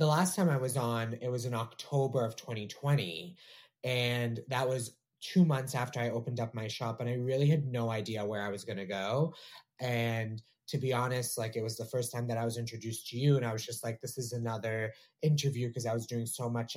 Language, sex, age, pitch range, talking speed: English, male, 30-49, 115-145 Hz, 235 wpm